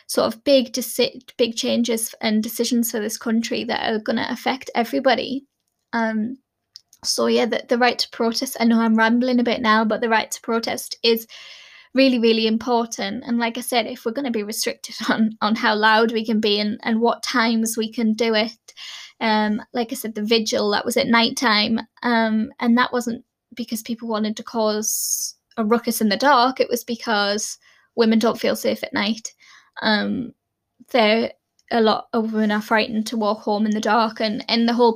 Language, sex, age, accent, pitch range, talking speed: English, female, 20-39, British, 220-245 Hz, 205 wpm